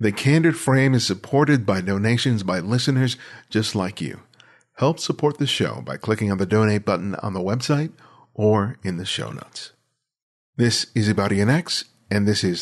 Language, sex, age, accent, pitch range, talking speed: English, male, 50-69, American, 100-125 Hz, 170 wpm